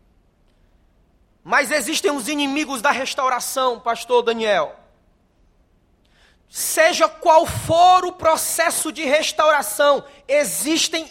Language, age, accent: Portuguese, 20-39, Brazilian